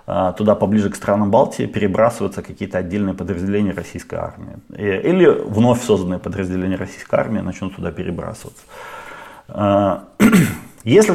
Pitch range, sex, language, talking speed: 95-125 Hz, male, Ukrainian, 115 wpm